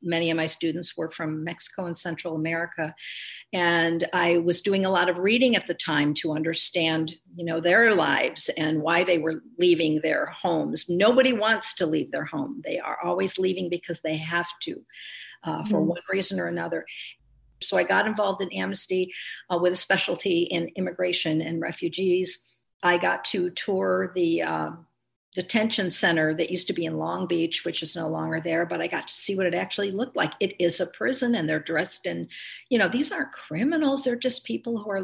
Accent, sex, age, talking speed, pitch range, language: American, female, 50-69, 200 wpm, 170-200 Hz, English